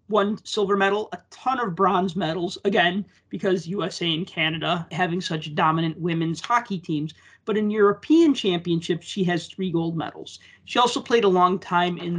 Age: 30-49